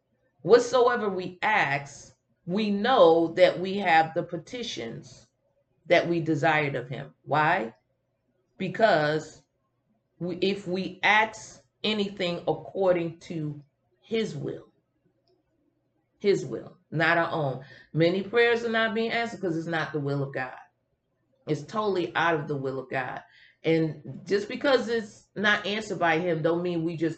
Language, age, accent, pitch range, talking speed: English, 40-59, American, 155-210 Hz, 140 wpm